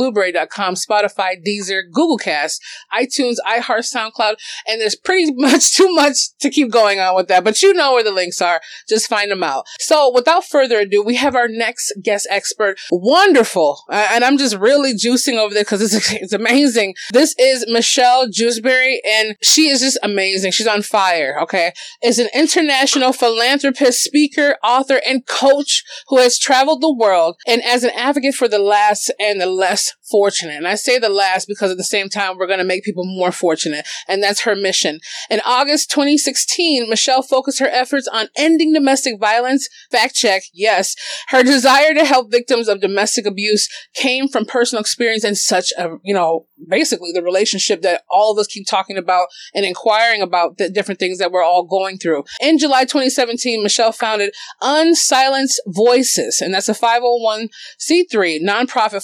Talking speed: 175 wpm